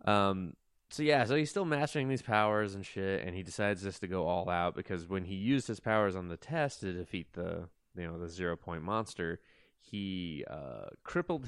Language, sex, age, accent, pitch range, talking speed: English, male, 20-39, American, 85-105 Hz, 210 wpm